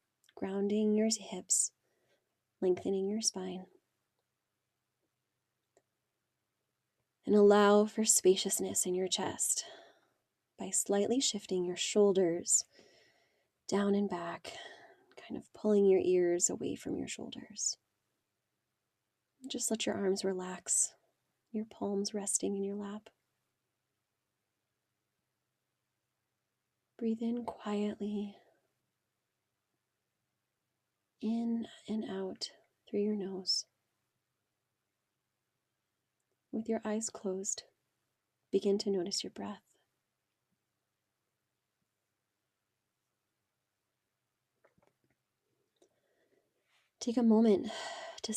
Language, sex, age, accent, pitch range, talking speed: English, female, 20-39, American, 195-220 Hz, 80 wpm